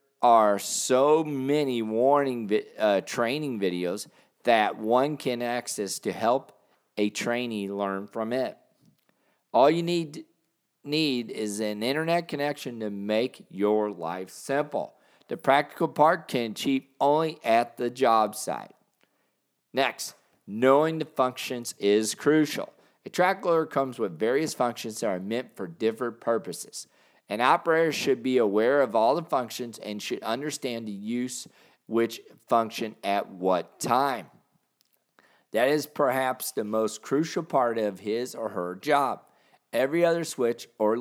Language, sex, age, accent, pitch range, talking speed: English, male, 50-69, American, 110-145 Hz, 140 wpm